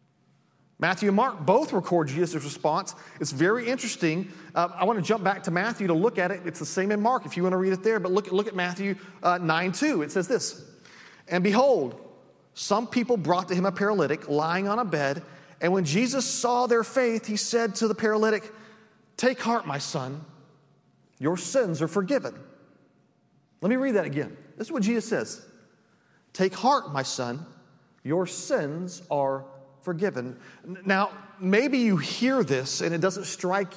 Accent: American